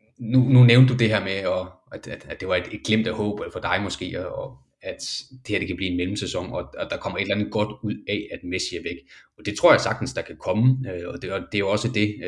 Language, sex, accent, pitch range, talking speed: Danish, male, native, 95-125 Hz, 295 wpm